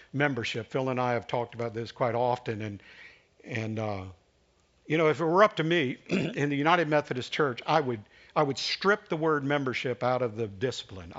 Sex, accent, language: male, American, English